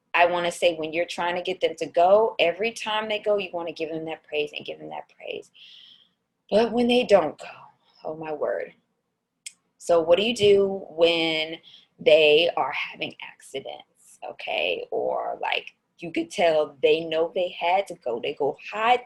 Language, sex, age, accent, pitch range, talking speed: English, female, 20-39, American, 175-245 Hz, 185 wpm